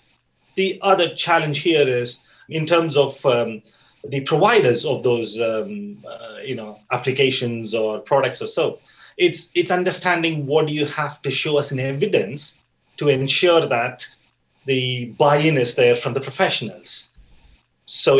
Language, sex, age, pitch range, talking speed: English, male, 30-49, 125-165 Hz, 150 wpm